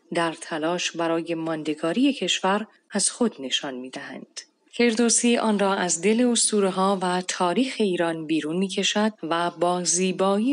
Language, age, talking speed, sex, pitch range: Persian, 30-49, 140 wpm, female, 170-220 Hz